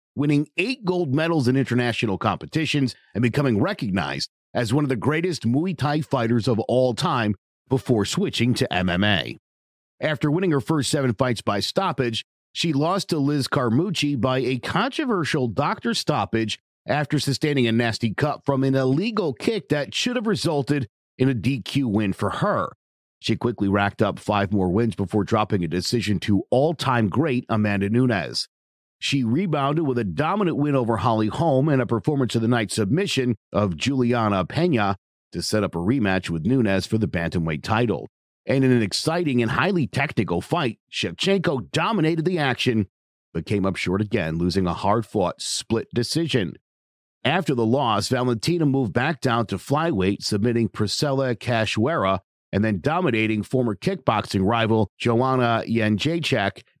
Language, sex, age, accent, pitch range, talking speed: English, male, 50-69, American, 105-145 Hz, 160 wpm